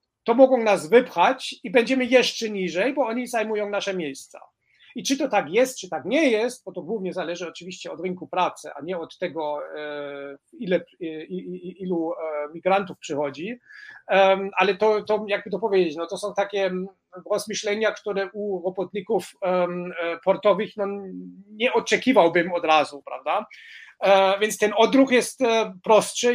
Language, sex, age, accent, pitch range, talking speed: Polish, male, 40-59, native, 175-220 Hz, 140 wpm